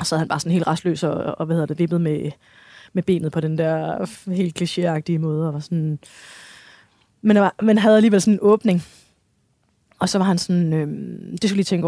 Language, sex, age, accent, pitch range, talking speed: Danish, female, 20-39, native, 155-185 Hz, 215 wpm